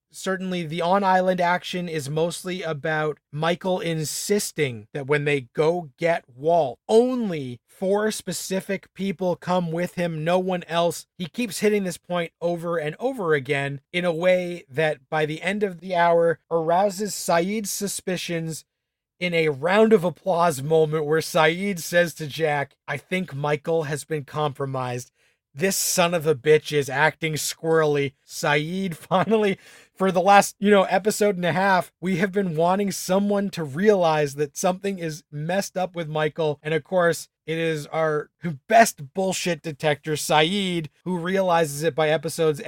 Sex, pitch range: male, 150-185 Hz